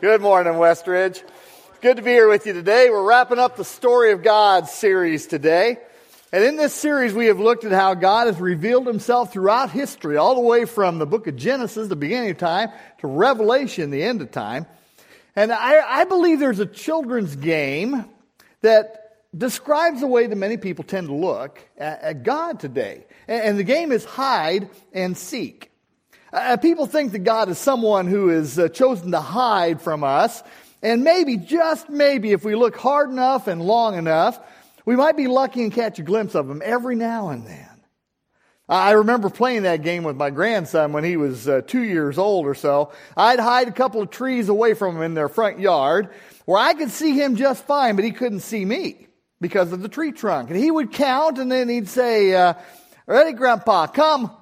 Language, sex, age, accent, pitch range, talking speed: English, male, 50-69, American, 185-255 Hz, 200 wpm